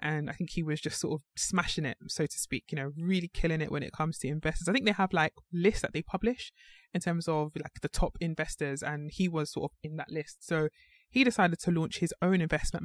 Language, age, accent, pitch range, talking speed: English, 20-39, British, 155-185 Hz, 255 wpm